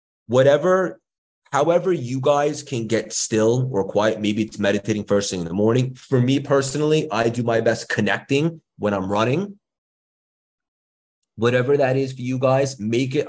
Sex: male